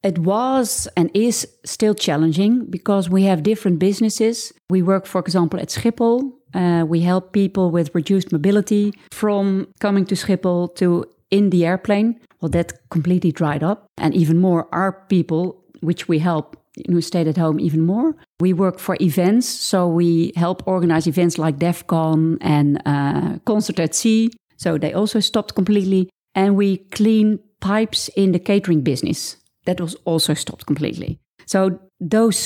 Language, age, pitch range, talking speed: Dutch, 40-59, 170-205 Hz, 165 wpm